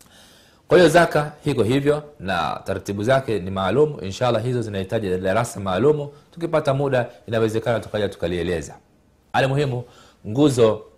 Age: 40-59